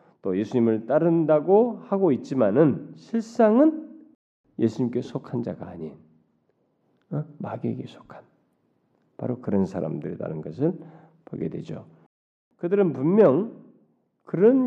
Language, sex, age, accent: Korean, male, 40-59, native